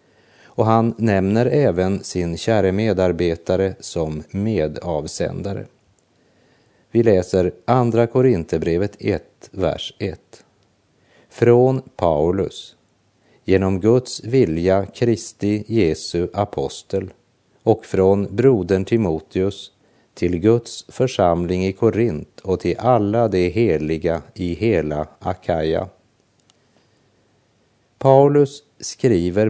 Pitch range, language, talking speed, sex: 90-115 Hz, Polish, 85 wpm, male